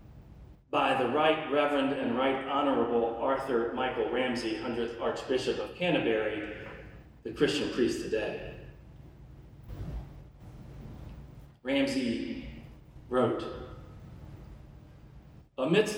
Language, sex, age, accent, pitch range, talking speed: English, male, 40-59, American, 155-205 Hz, 80 wpm